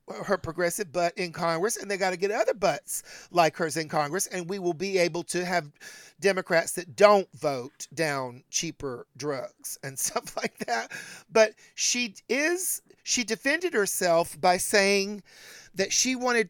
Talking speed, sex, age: 165 wpm, male, 50-69